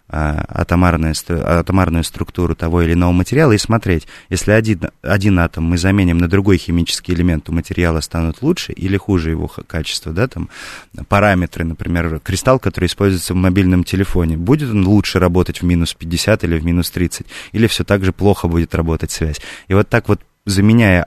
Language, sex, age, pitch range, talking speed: Russian, male, 20-39, 85-105 Hz, 175 wpm